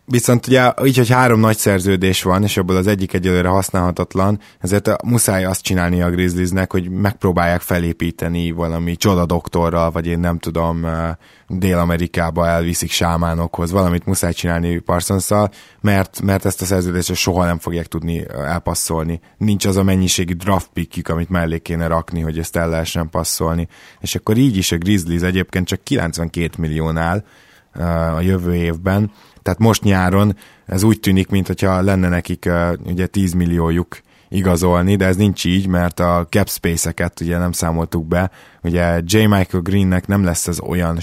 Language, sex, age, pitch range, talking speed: Hungarian, male, 20-39, 85-95 Hz, 160 wpm